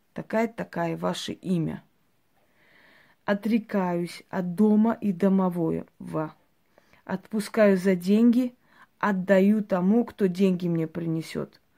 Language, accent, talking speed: Russian, native, 85 wpm